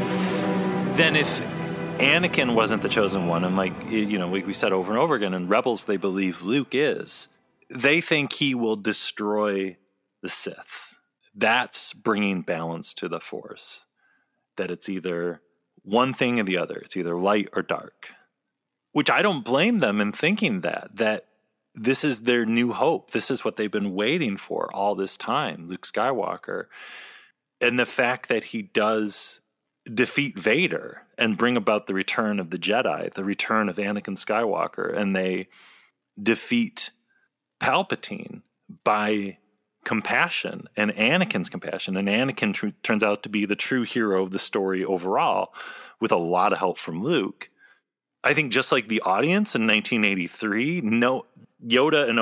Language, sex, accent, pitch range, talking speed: English, male, American, 95-130 Hz, 160 wpm